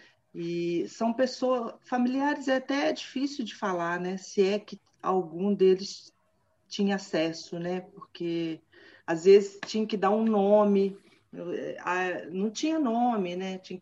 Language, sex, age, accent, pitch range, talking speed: Portuguese, female, 40-59, Brazilian, 165-205 Hz, 135 wpm